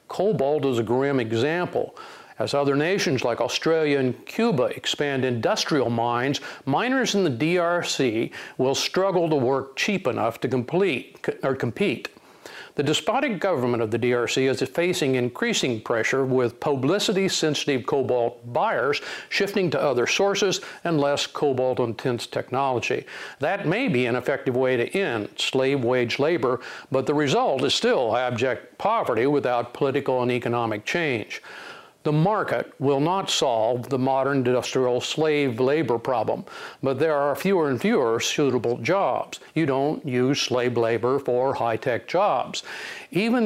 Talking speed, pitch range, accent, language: 140 wpm, 125-155 Hz, American, English